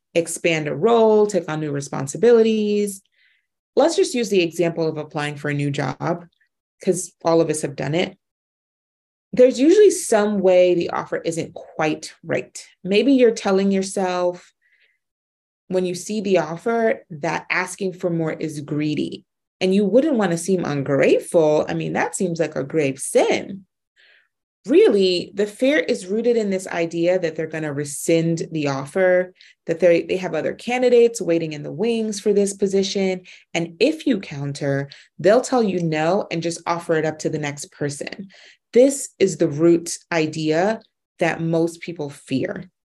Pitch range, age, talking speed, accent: 160-205 Hz, 30-49, 165 wpm, American